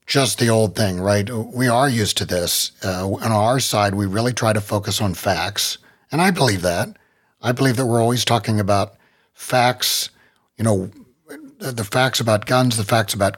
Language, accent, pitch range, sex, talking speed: English, American, 105-130 Hz, male, 190 wpm